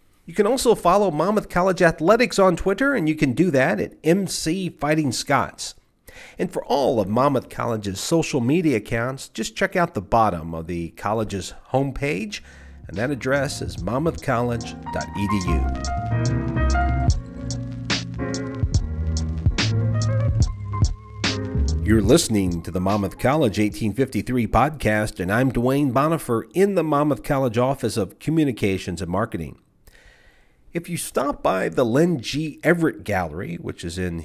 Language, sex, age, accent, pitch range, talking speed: English, male, 50-69, American, 105-150 Hz, 130 wpm